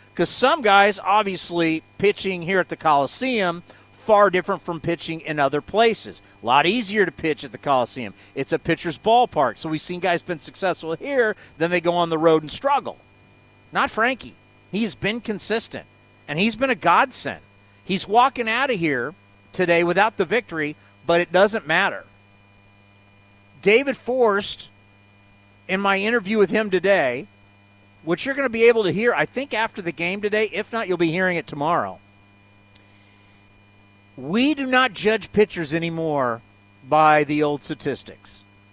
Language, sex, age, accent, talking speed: English, male, 50-69, American, 165 wpm